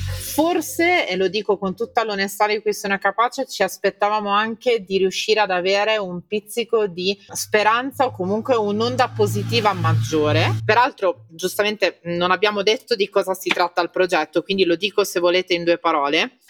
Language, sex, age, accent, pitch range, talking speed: Italian, female, 30-49, native, 165-225 Hz, 165 wpm